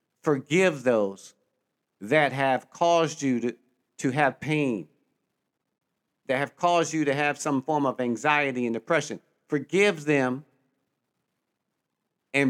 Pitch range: 130-160 Hz